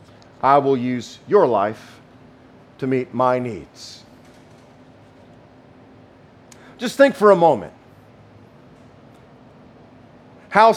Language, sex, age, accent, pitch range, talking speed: English, male, 50-69, American, 125-205 Hz, 85 wpm